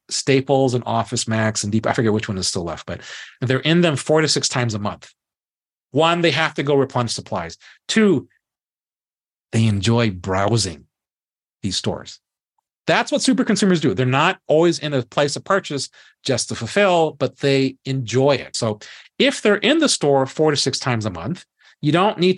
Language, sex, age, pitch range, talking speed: English, male, 40-59, 115-150 Hz, 190 wpm